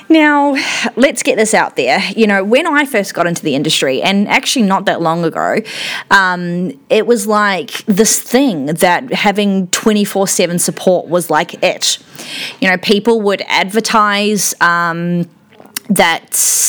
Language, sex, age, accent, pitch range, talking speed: English, female, 20-39, Australian, 175-220 Hz, 145 wpm